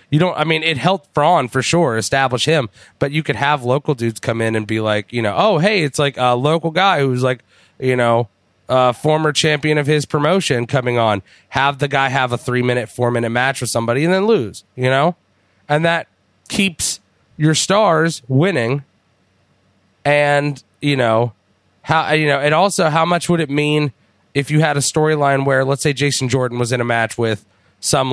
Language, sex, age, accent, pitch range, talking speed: English, male, 30-49, American, 115-150 Hz, 205 wpm